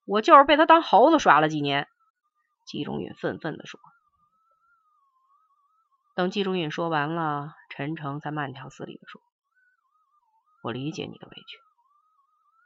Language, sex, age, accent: Chinese, female, 30-49, native